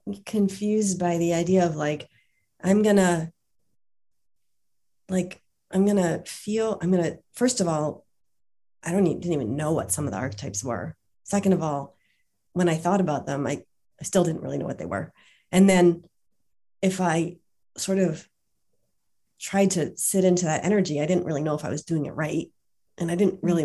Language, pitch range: English, 150-185 Hz